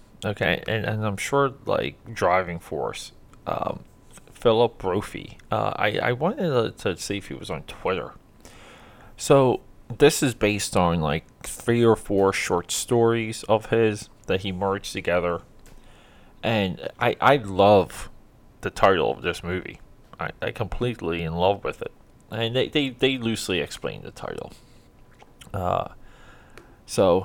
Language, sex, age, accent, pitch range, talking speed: English, male, 20-39, American, 90-115 Hz, 145 wpm